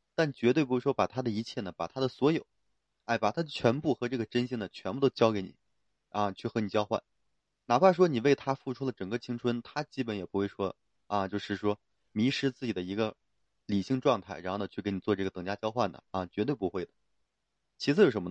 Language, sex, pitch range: Chinese, male, 105-145 Hz